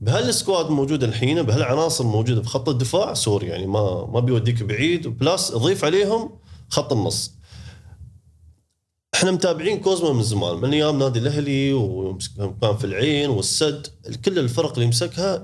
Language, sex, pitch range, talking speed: Arabic, male, 105-145 Hz, 130 wpm